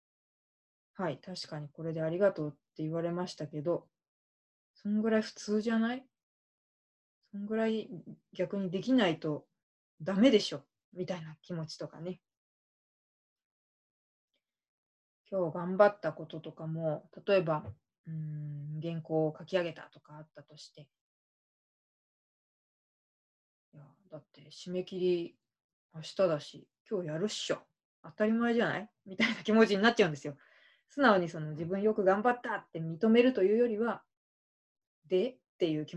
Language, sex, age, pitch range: Japanese, female, 20-39, 155-200 Hz